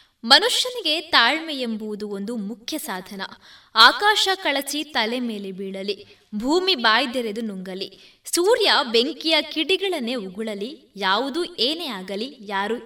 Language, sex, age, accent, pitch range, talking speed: Kannada, female, 20-39, native, 210-300 Hz, 105 wpm